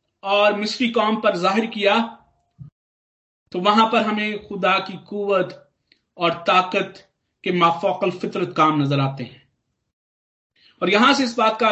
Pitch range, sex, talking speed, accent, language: 185-220 Hz, male, 110 wpm, native, Hindi